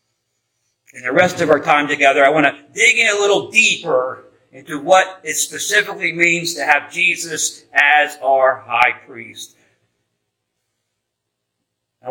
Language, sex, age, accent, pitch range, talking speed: English, male, 50-69, American, 145-195 Hz, 140 wpm